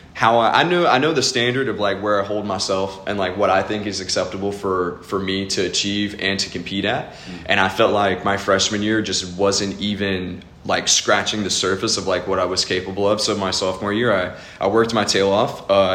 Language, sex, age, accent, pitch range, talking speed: English, male, 20-39, American, 95-110 Hz, 235 wpm